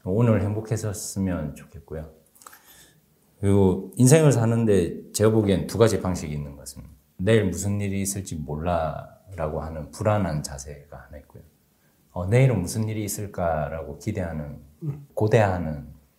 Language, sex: Korean, male